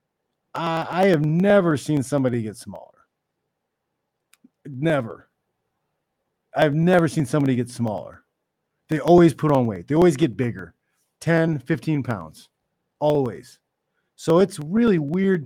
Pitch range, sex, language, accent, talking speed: 115-160 Hz, male, English, American, 120 wpm